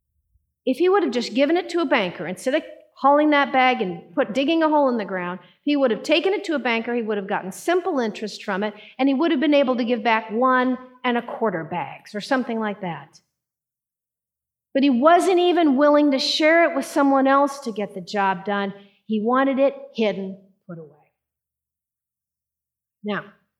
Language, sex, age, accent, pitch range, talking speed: English, female, 50-69, American, 180-275 Hz, 200 wpm